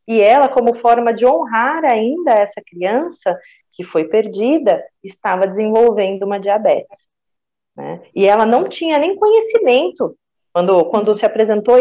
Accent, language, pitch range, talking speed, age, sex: Brazilian, Portuguese, 190-270 Hz, 135 wpm, 30-49, female